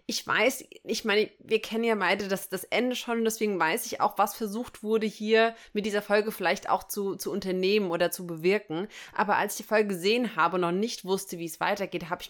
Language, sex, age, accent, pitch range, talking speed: English, female, 20-39, German, 180-220 Hz, 230 wpm